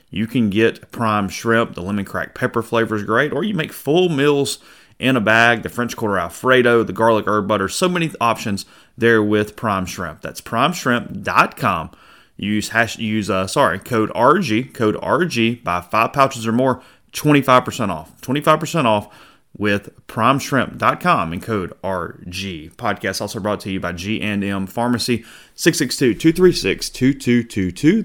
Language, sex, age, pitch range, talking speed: English, male, 30-49, 100-120 Hz, 150 wpm